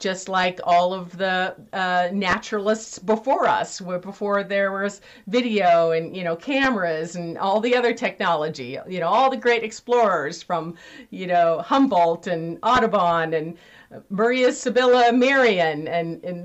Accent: American